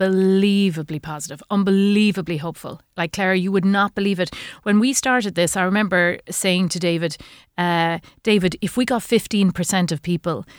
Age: 30-49